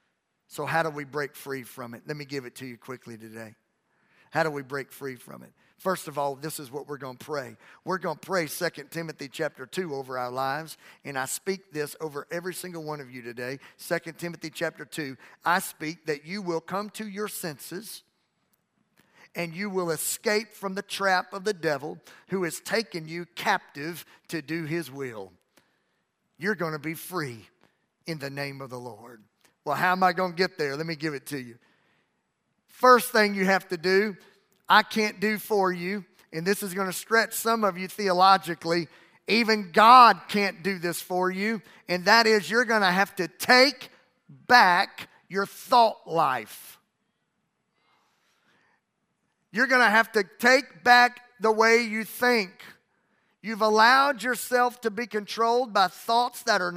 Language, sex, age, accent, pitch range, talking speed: English, male, 50-69, American, 150-215 Hz, 185 wpm